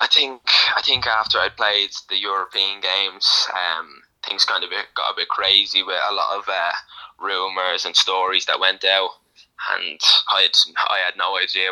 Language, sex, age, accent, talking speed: English, male, 10-29, British, 185 wpm